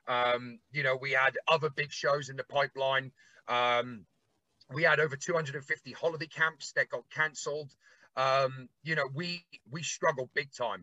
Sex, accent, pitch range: male, British, 130-160 Hz